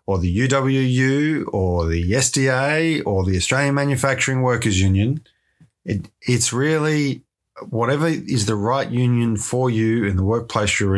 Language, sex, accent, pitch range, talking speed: English, male, Australian, 100-130 Hz, 140 wpm